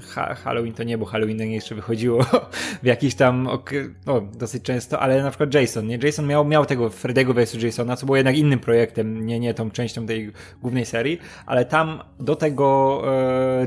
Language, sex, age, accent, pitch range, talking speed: Polish, male, 20-39, native, 120-145 Hz, 190 wpm